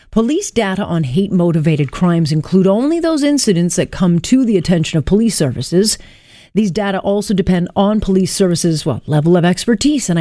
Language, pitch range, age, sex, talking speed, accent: English, 170-210 Hz, 40-59, female, 170 wpm, American